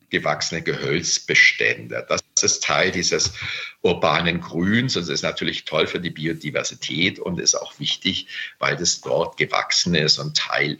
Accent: German